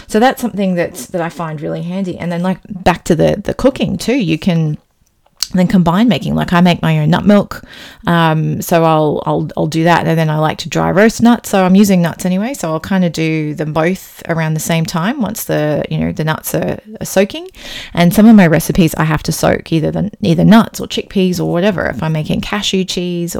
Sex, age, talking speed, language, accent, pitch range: female, 30-49, 235 wpm, English, Australian, 165-200 Hz